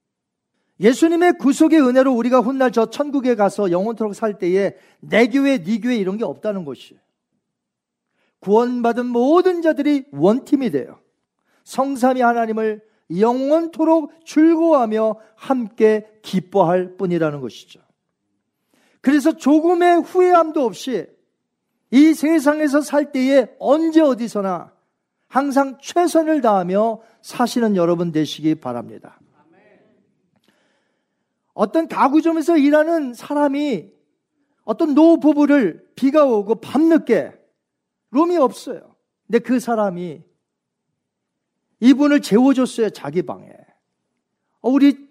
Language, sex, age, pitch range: Korean, male, 40-59, 210-295 Hz